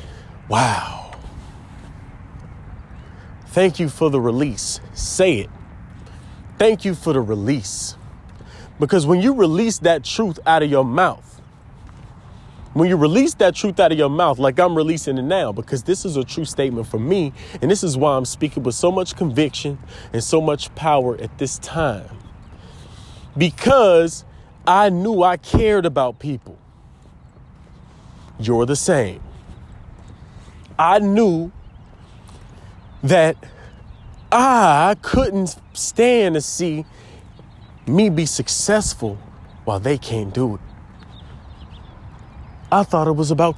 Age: 30-49